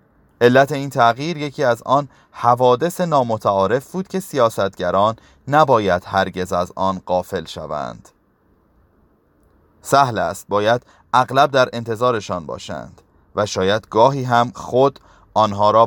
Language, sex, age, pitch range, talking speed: Persian, male, 30-49, 100-135 Hz, 115 wpm